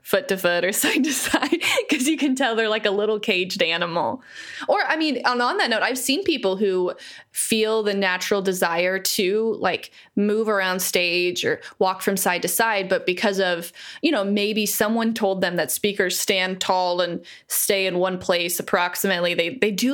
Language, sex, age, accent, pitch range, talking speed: English, female, 20-39, American, 185-225 Hz, 195 wpm